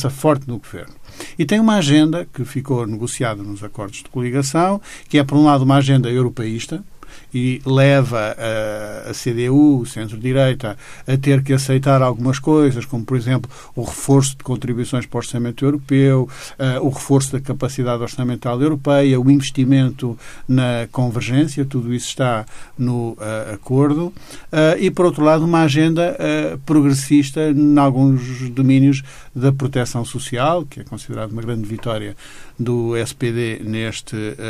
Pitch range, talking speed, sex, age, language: 120-145 Hz, 150 wpm, male, 50-69, Portuguese